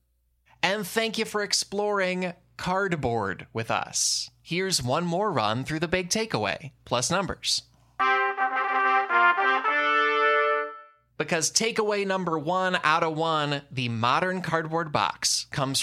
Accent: American